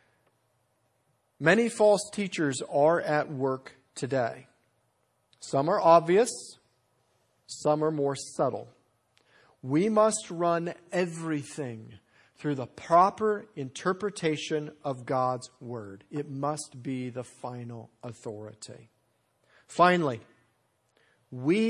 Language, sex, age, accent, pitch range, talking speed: English, male, 50-69, American, 125-170 Hz, 90 wpm